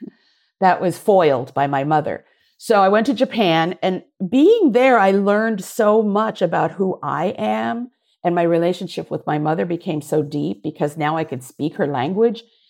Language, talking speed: English, 180 wpm